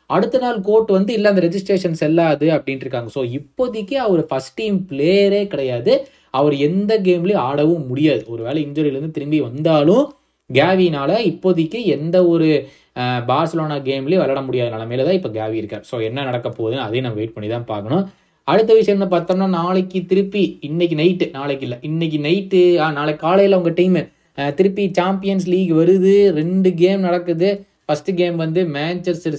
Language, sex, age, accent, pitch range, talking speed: Tamil, male, 20-39, native, 130-180 Hz, 150 wpm